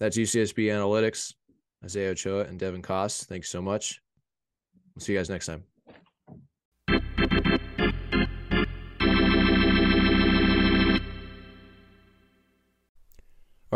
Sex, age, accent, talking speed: male, 20-39, American, 80 wpm